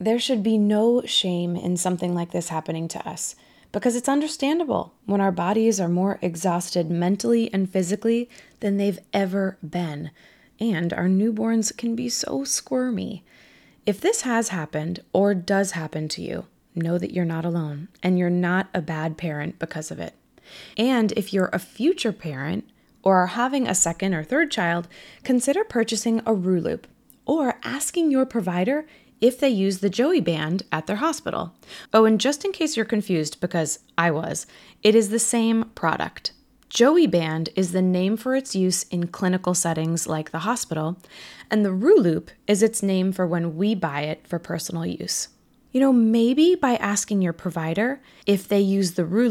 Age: 20-39